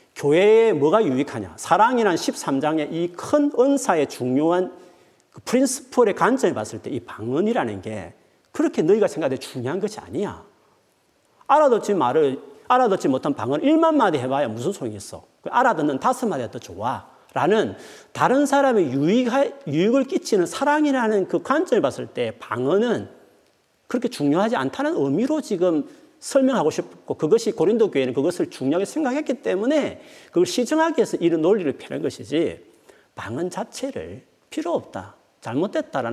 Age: 40-59